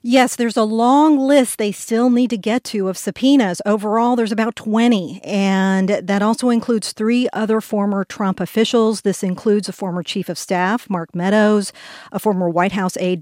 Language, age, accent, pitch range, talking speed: English, 50-69, American, 185-225 Hz, 180 wpm